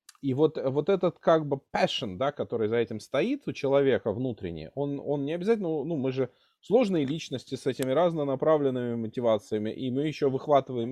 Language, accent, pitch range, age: Russian, native, 140-185 Hz, 20-39